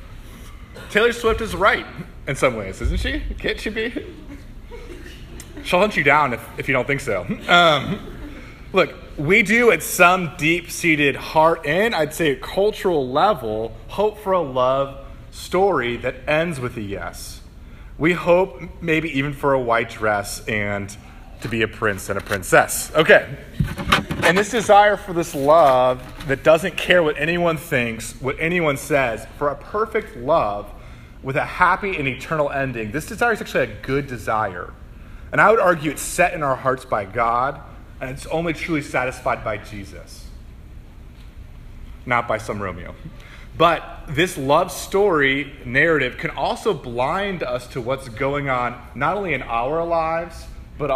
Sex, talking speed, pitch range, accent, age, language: male, 160 wpm, 115-170 Hz, American, 30-49, English